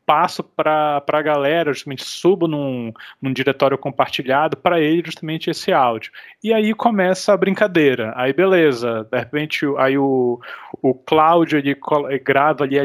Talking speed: 150 wpm